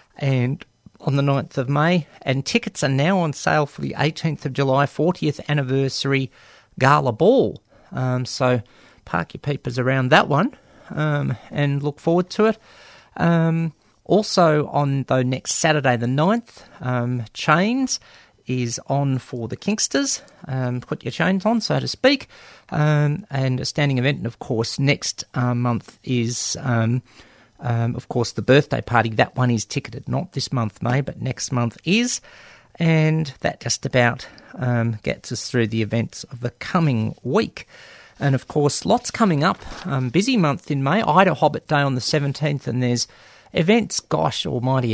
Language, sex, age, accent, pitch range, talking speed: English, male, 40-59, Australian, 125-155 Hz, 165 wpm